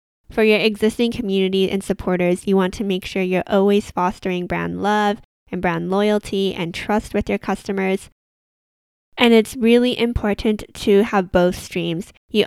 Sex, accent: female, American